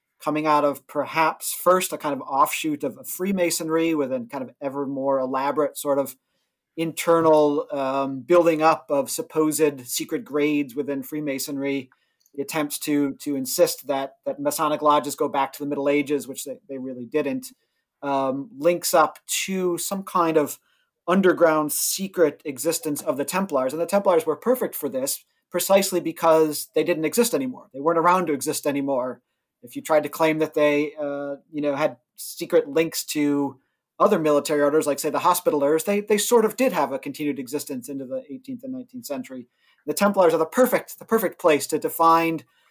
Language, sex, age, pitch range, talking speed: English, male, 40-59, 145-175 Hz, 180 wpm